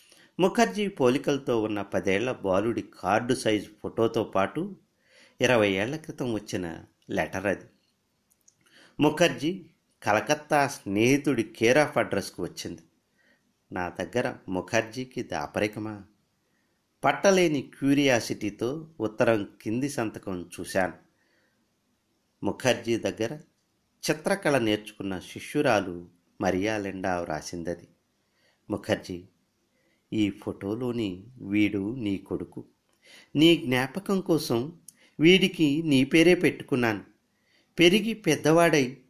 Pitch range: 105-155 Hz